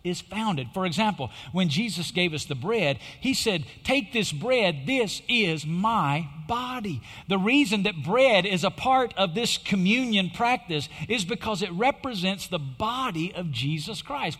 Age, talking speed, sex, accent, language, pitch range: 50-69, 165 wpm, male, American, English, 170-260 Hz